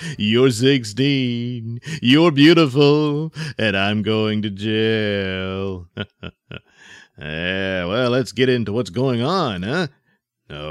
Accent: American